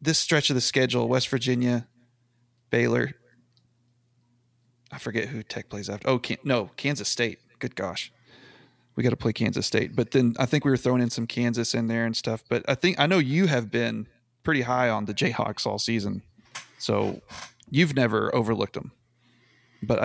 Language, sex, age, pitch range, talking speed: English, male, 30-49, 115-125 Hz, 185 wpm